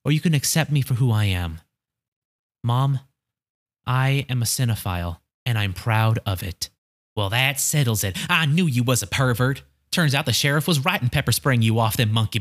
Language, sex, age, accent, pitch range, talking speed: English, male, 20-39, American, 105-140 Hz, 205 wpm